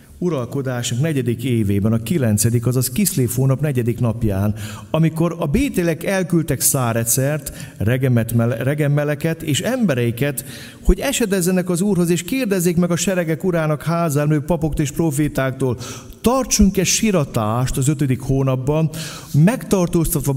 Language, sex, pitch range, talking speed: Hungarian, male, 105-150 Hz, 115 wpm